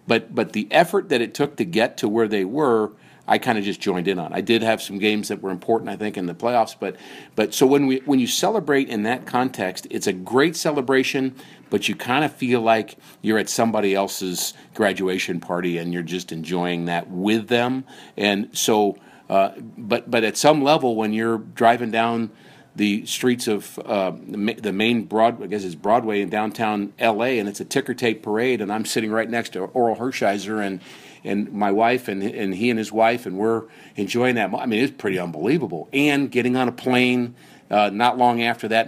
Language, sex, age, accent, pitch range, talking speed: English, male, 50-69, American, 100-120 Hz, 210 wpm